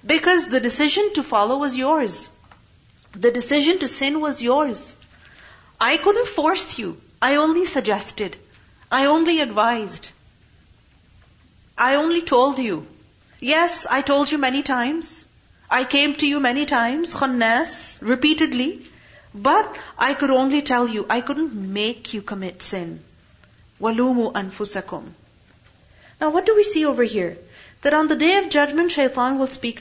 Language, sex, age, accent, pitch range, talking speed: English, female, 40-59, Indian, 210-295 Hz, 140 wpm